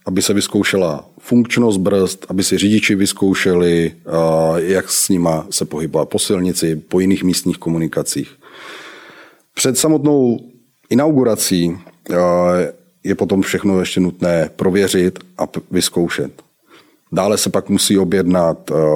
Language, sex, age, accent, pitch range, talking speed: Czech, male, 30-49, native, 85-100 Hz, 115 wpm